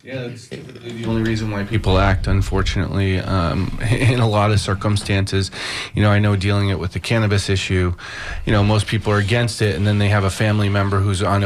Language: English